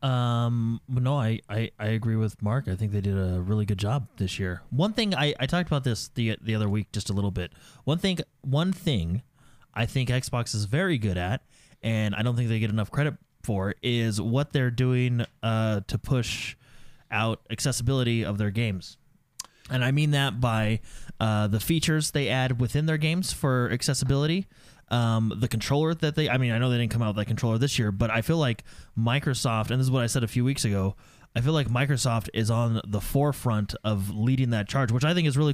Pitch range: 110-140 Hz